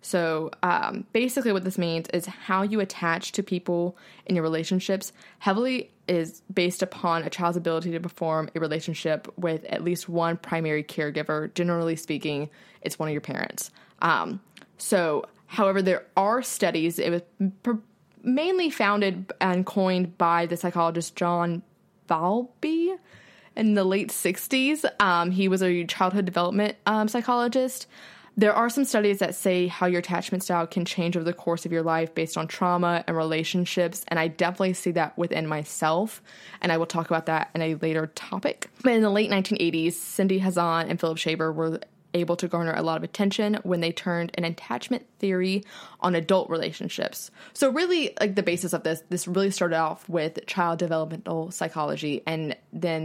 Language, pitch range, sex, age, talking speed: English, 165-195 Hz, female, 20-39, 170 wpm